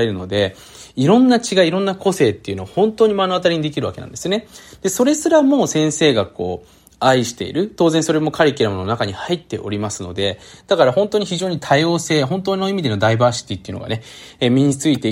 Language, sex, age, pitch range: Japanese, male, 20-39, 110-175 Hz